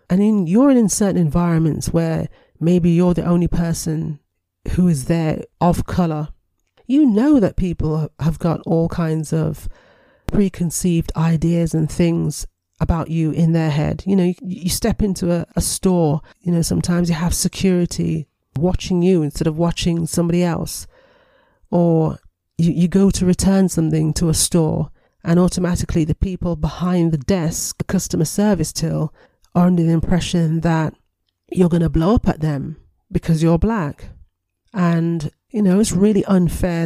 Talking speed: 160 wpm